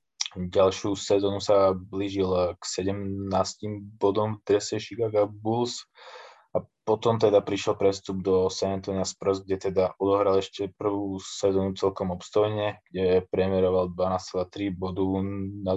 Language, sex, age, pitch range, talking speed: Slovak, male, 20-39, 95-100 Hz, 120 wpm